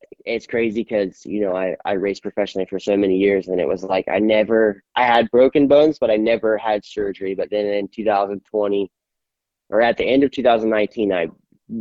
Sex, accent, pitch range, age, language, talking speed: male, American, 100-115 Hz, 10-29, English, 195 wpm